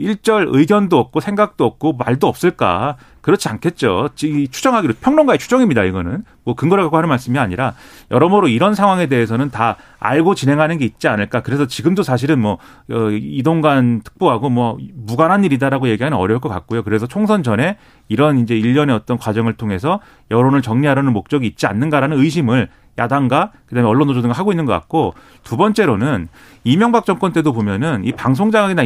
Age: 40-59